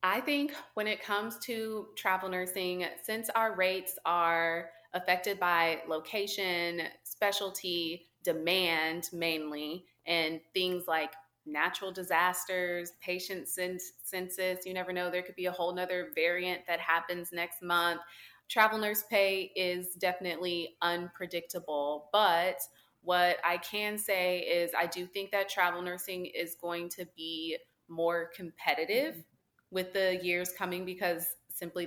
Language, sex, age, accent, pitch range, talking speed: English, female, 20-39, American, 165-195 Hz, 130 wpm